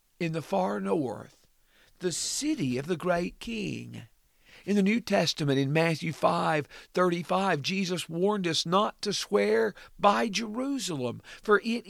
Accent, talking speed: American, 135 wpm